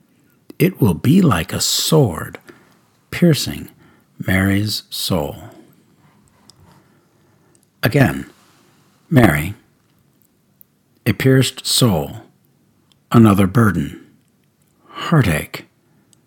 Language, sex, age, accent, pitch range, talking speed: English, male, 60-79, American, 90-145 Hz, 65 wpm